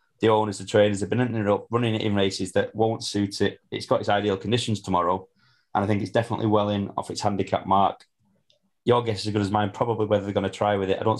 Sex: male